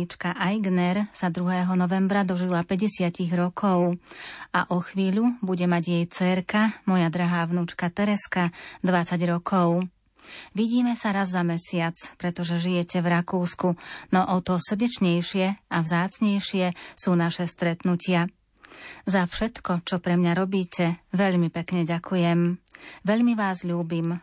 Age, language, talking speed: 30-49, Slovak, 125 wpm